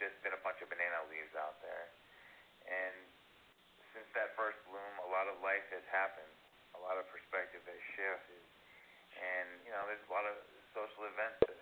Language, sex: English, male